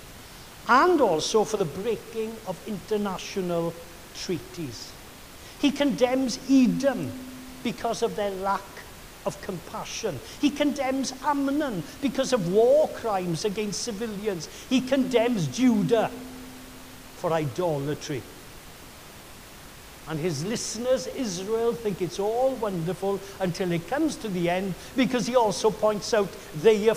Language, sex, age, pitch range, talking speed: English, male, 60-79, 190-260 Hz, 115 wpm